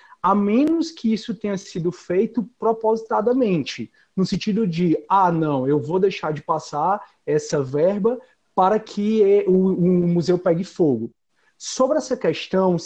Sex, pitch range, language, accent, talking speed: male, 165-210 Hz, Portuguese, Brazilian, 140 wpm